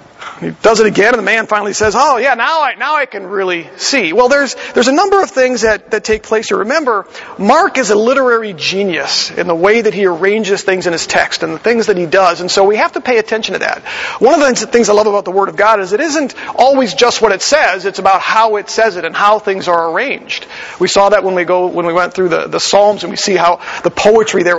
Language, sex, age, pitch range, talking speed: English, male, 40-59, 185-245 Hz, 275 wpm